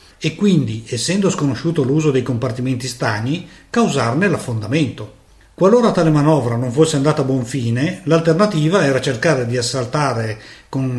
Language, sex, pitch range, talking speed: Italian, male, 120-165 Hz, 135 wpm